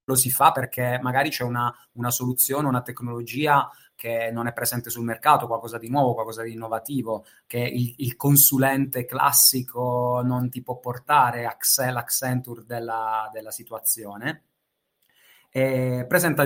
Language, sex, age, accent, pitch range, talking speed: Italian, male, 20-39, native, 120-130 Hz, 135 wpm